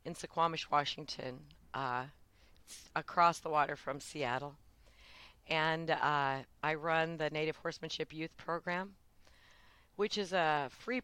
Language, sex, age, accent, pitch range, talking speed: English, female, 40-59, American, 125-160 Hz, 125 wpm